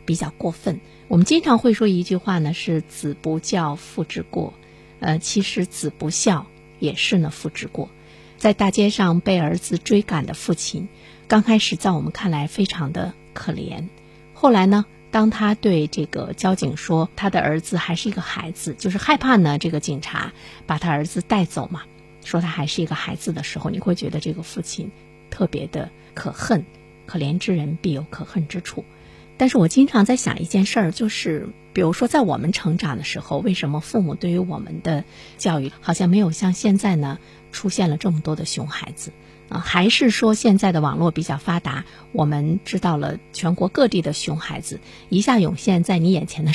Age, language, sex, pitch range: 50-69, Chinese, female, 155-195 Hz